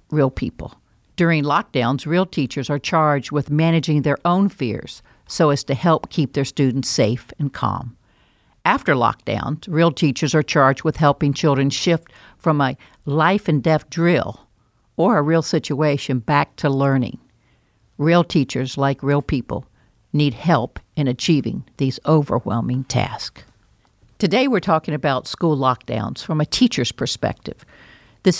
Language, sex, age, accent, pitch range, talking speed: English, female, 60-79, American, 130-160 Hz, 140 wpm